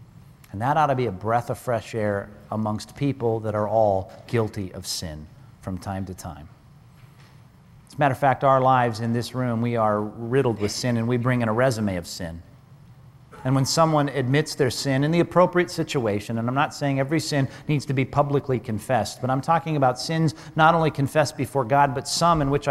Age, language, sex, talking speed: 40-59, English, male, 210 wpm